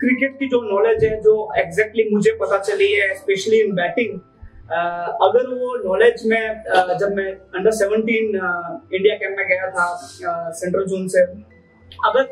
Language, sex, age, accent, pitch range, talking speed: Hindi, male, 20-39, native, 195-265 Hz, 155 wpm